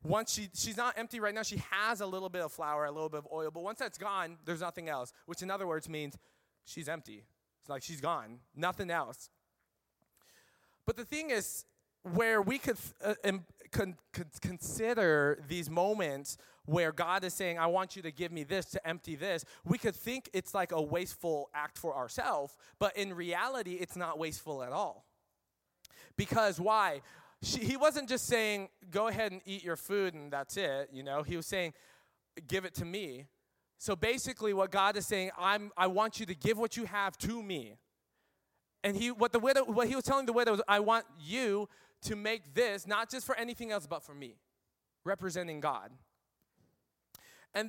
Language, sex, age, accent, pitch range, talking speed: English, male, 20-39, American, 165-220 Hz, 195 wpm